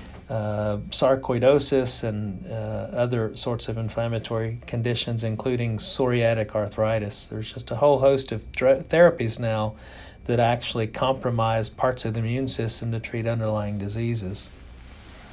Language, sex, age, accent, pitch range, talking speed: English, male, 40-59, American, 110-125 Hz, 130 wpm